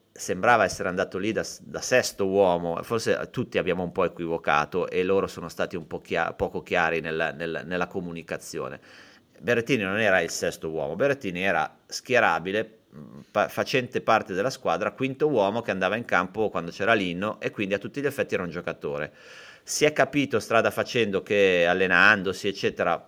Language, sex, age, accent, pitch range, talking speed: Italian, male, 30-49, native, 90-125 Hz, 175 wpm